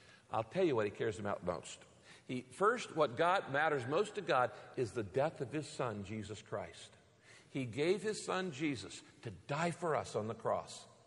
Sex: male